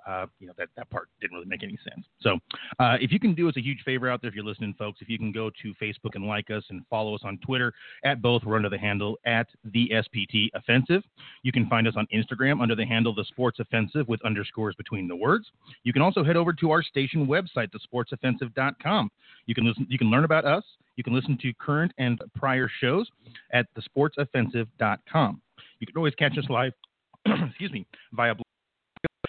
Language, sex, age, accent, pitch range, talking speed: English, male, 30-49, American, 110-145 Hz, 220 wpm